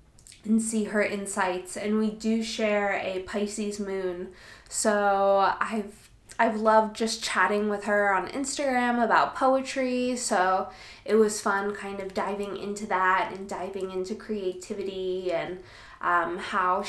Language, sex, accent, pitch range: English, female, American, 195-255 Hz